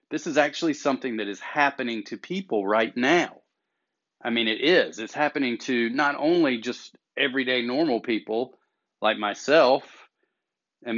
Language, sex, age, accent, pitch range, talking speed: English, male, 40-59, American, 115-140 Hz, 150 wpm